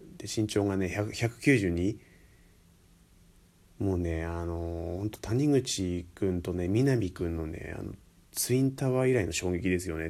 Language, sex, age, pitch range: Japanese, male, 30-49, 85-100 Hz